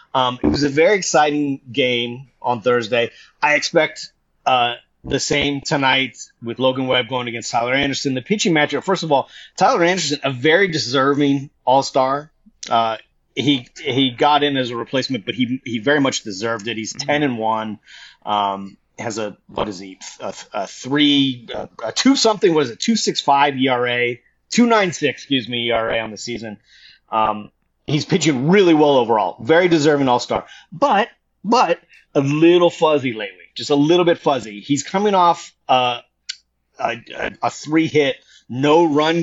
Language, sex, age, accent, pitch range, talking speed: English, male, 30-49, American, 120-150 Hz, 165 wpm